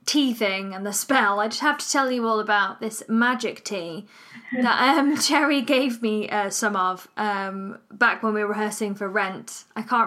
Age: 20-39